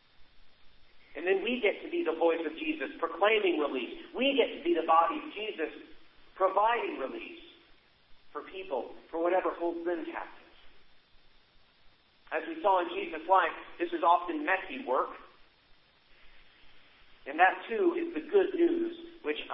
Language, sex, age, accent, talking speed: English, male, 50-69, American, 145 wpm